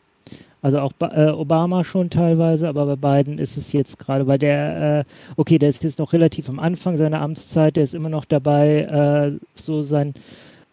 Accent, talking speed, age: German, 190 wpm, 30-49